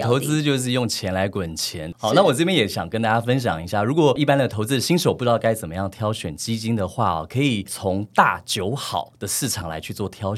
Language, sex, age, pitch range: Chinese, male, 30-49, 100-135 Hz